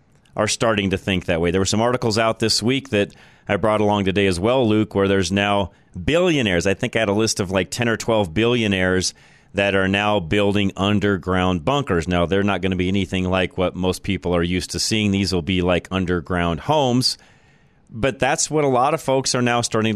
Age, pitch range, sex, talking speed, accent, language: 40-59, 90-105 Hz, male, 225 wpm, American, English